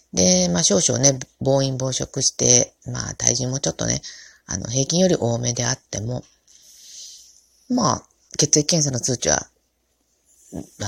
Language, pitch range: Japanese, 110-160 Hz